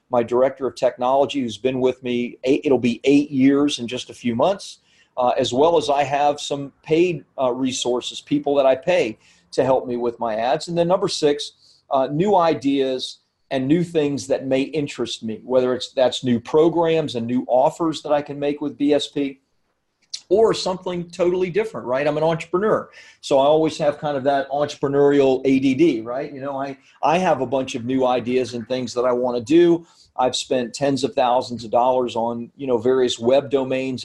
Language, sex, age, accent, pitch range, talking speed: English, male, 40-59, American, 125-150 Hz, 200 wpm